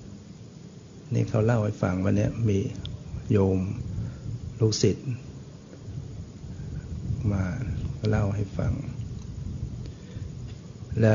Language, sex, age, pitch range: Thai, male, 60-79, 105-125 Hz